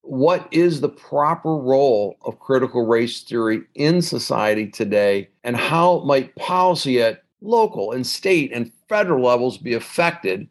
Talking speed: 145 wpm